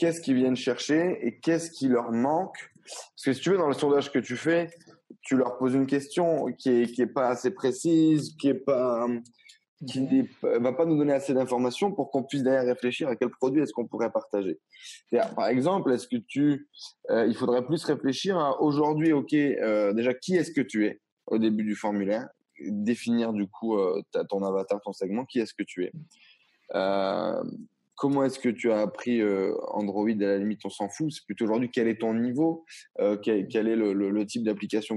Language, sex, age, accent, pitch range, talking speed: French, male, 20-39, French, 110-150 Hz, 205 wpm